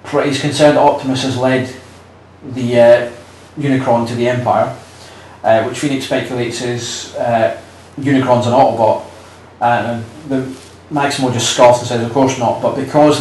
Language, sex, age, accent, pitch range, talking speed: English, male, 30-49, British, 115-135 Hz, 155 wpm